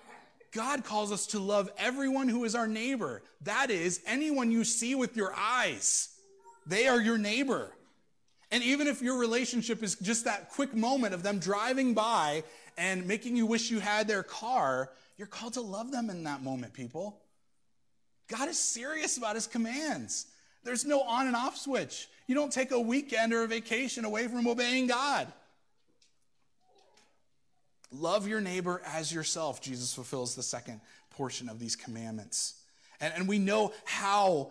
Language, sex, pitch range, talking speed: English, male, 180-235 Hz, 165 wpm